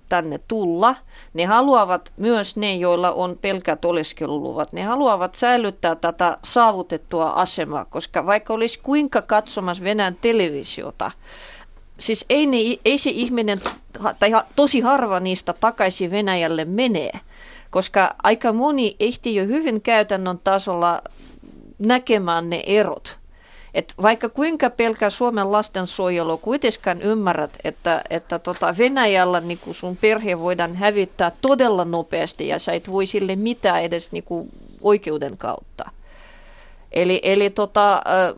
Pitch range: 180-230 Hz